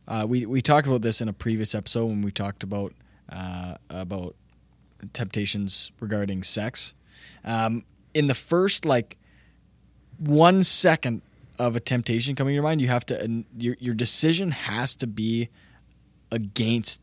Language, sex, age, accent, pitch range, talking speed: English, male, 20-39, American, 100-120 Hz, 150 wpm